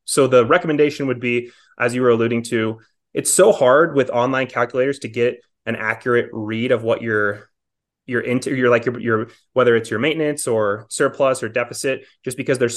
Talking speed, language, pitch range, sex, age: 185 wpm, English, 115-130 Hz, male, 20-39